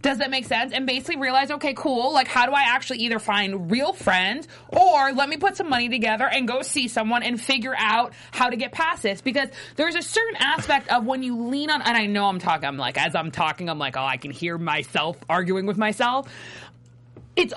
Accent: American